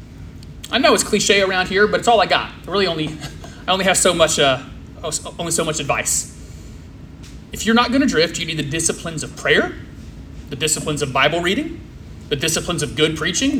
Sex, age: male, 30-49